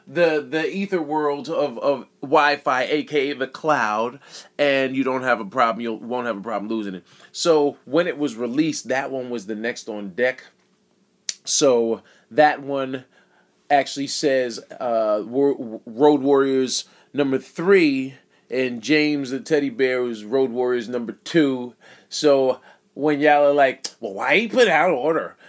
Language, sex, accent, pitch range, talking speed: English, male, American, 135-170 Hz, 155 wpm